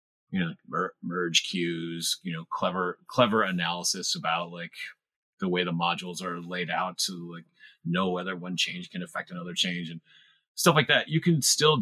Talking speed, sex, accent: 185 wpm, male, American